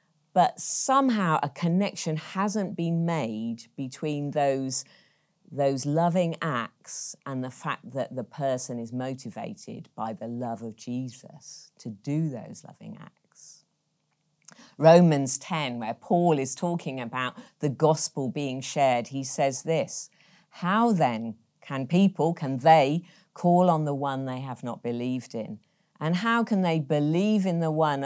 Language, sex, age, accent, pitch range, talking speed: English, female, 40-59, British, 130-170 Hz, 145 wpm